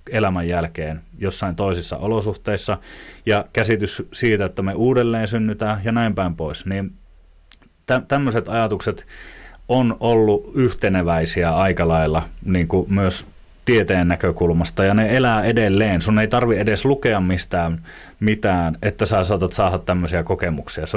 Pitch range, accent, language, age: 90-110 Hz, native, Finnish, 30-49